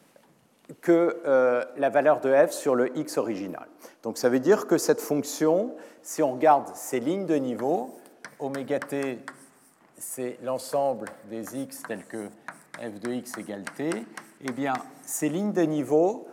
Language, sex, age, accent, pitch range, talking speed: French, male, 50-69, French, 125-160 Hz, 155 wpm